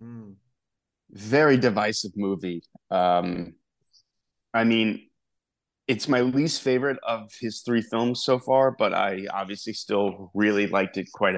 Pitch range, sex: 100-120 Hz, male